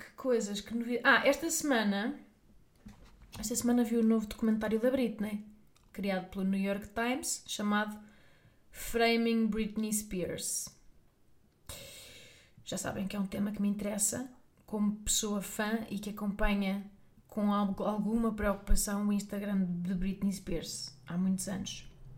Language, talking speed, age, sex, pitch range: Portuguese, 140 wpm, 20-39, female, 195-240 Hz